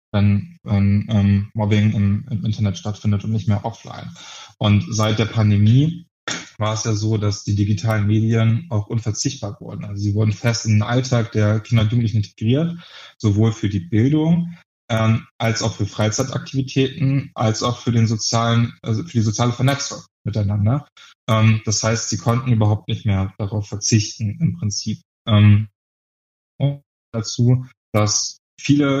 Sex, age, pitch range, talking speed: male, 20-39, 105-125 Hz, 155 wpm